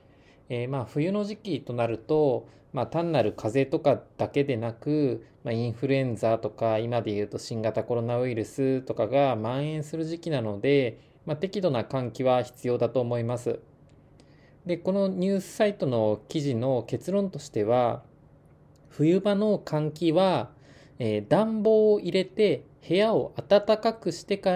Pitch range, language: 115-170 Hz, Japanese